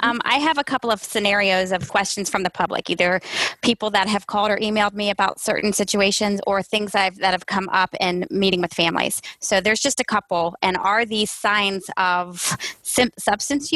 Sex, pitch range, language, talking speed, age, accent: female, 190-225 Hz, English, 190 wpm, 20-39, American